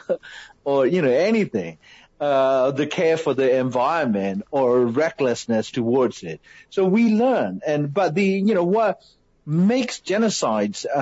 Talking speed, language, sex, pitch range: 135 wpm, English, male, 120-185 Hz